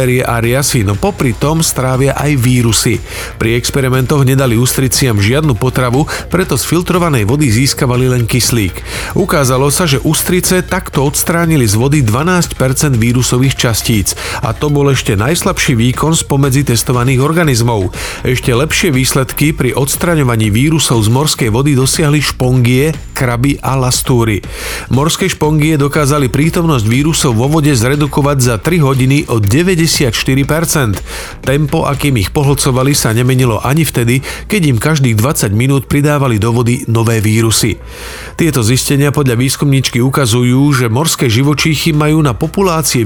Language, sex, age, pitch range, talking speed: Slovak, male, 40-59, 120-150 Hz, 135 wpm